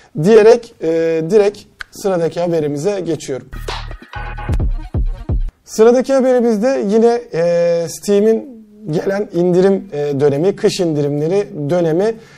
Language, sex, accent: Turkish, male, native